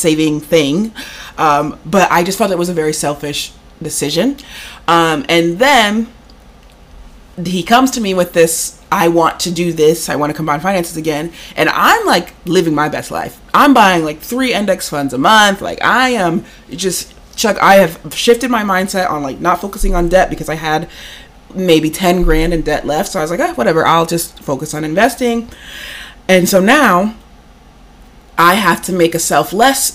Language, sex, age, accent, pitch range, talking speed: English, female, 30-49, American, 155-195 Hz, 185 wpm